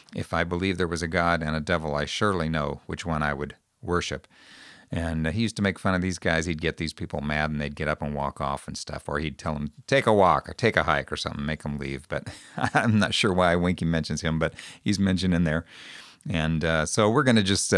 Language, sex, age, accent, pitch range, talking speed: English, male, 50-69, American, 80-95 Hz, 265 wpm